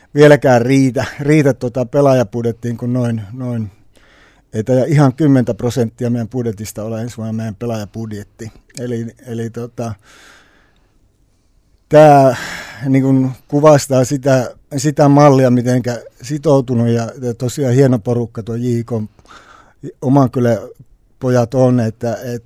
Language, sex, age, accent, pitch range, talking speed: Finnish, male, 60-79, native, 115-130 Hz, 110 wpm